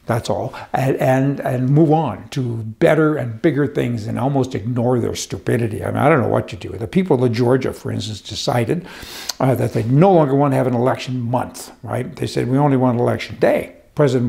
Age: 60-79